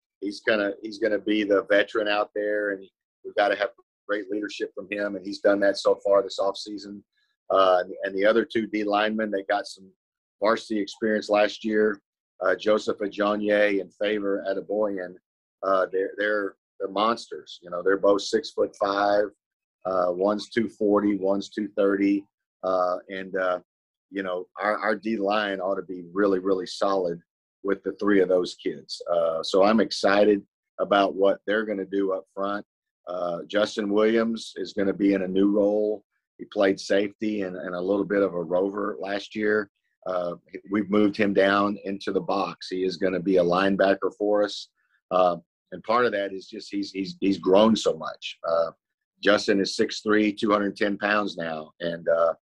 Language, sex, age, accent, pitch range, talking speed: English, male, 40-59, American, 95-105 Hz, 185 wpm